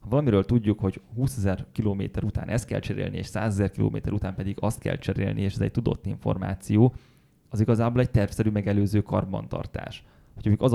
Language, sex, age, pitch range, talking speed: English, male, 20-39, 100-120 Hz, 190 wpm